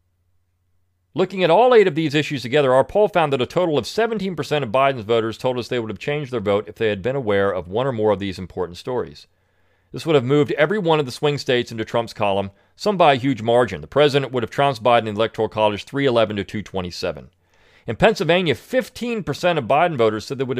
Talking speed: 230 wpm